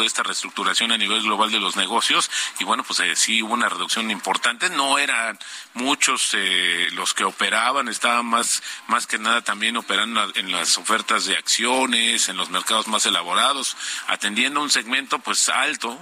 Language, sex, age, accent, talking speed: Spanish, male, 40-59, Mexican, 175 wpm